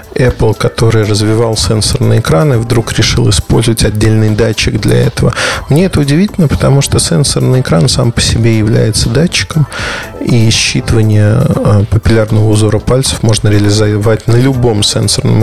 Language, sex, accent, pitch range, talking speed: Russian, male, native, 110-135 Hz, 130 wpm